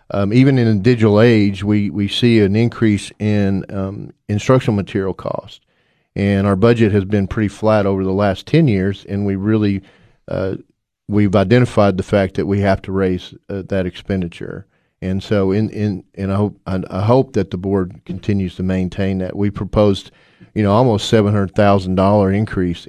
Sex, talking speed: male, 185 wpm